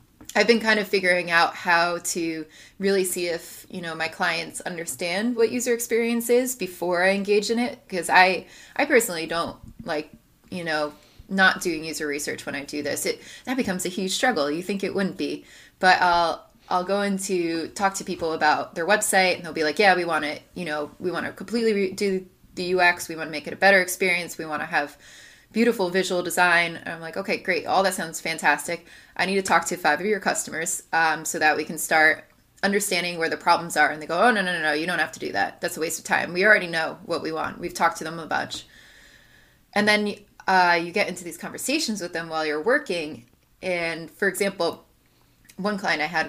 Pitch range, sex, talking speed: 165-195 Hz, female, 225 wpm